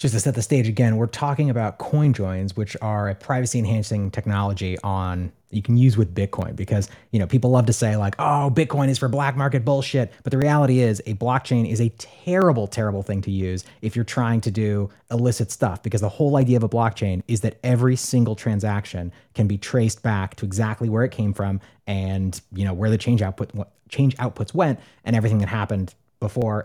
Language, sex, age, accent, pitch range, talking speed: English, male, 30-49, American, 100-125 Hz, 215 wpm